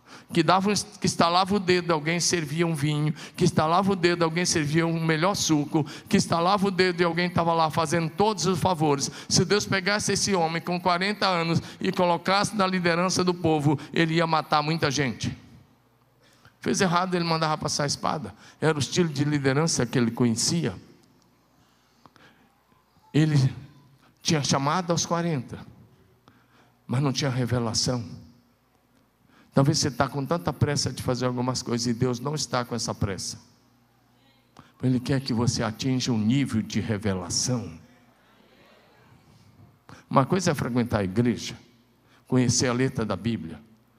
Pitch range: 125-175 Hz